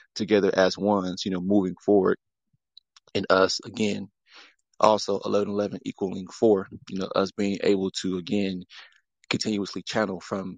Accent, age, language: American, 20-39, English